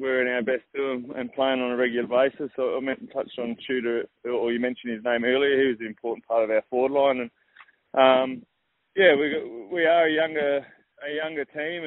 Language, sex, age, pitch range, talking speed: English, male, 20-39, 120-135 Hz, 225 wpm